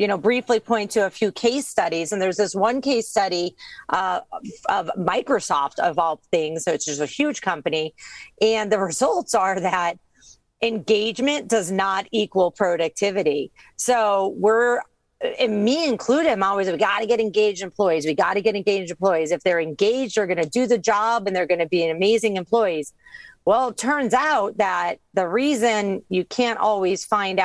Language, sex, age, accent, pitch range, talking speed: English, female, 40-59, American, 180-225 Hz, 180 wpm